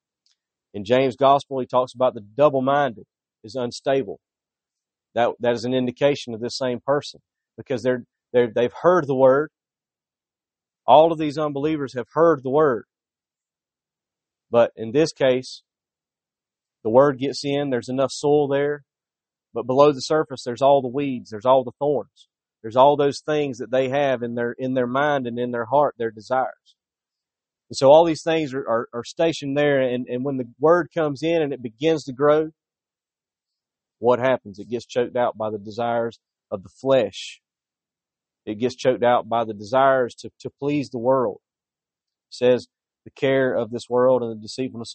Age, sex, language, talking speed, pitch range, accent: 30-49, male, English, 175 wpm, 120-140 Hz, American